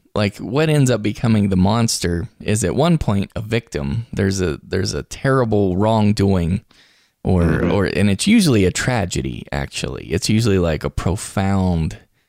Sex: male